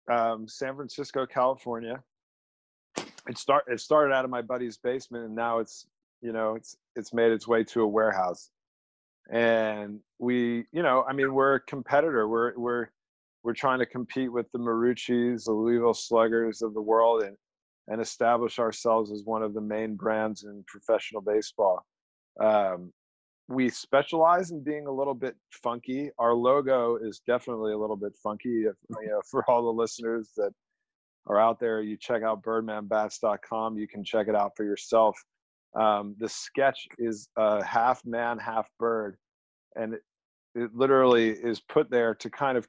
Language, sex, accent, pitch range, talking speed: English, male, American, 110-120 Hz, 165 wpm